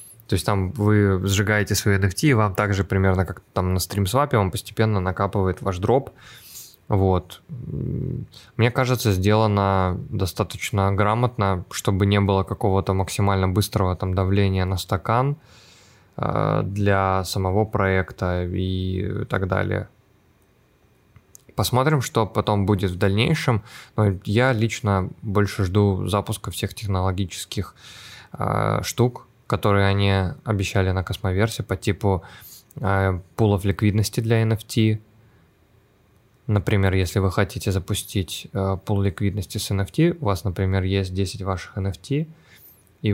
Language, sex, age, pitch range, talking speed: Russian, male, 20-39, 95-110 Hz, 120 wpm